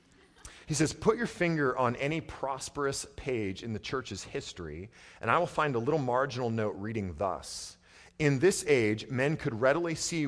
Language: English